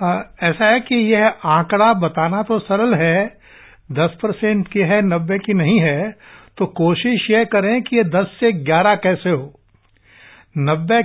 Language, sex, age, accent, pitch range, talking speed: English, male, 60-79, Indian, 165-220 Hz, 150 wpm